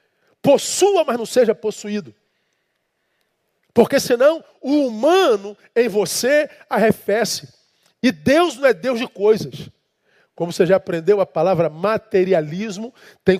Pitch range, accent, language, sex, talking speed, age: 150-230 Hz, Brazilian, Portuguese, male, 120 wpm, 50-69